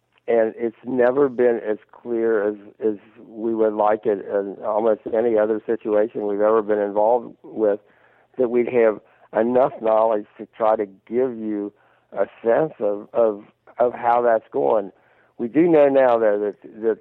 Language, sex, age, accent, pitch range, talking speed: English, male, 60-79, American, 105-120 Hz, 165 wpm